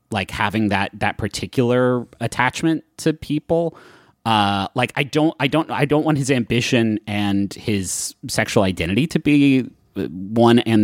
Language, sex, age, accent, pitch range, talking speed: English, male, 30-49, American, 100-130 Hz, 150 wpm